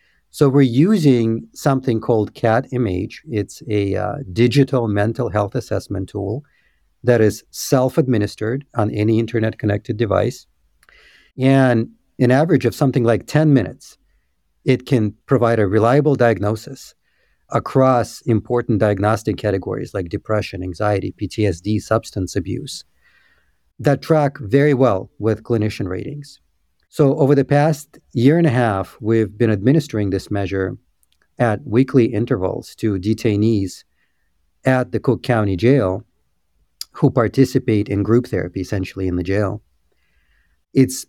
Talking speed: 125 wpm